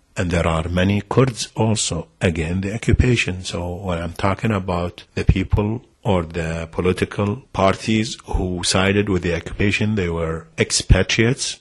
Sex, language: male, English